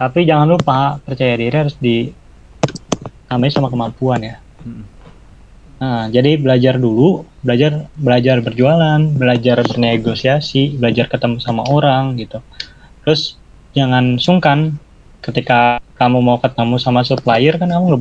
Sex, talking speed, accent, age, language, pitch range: male, 120 wpm, native, 20-39, Indonesian, 120-150 Hz